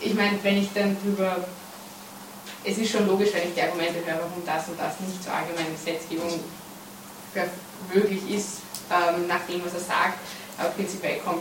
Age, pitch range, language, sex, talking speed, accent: 20-39, 170-195 Hz, German, female, 180 wpm, German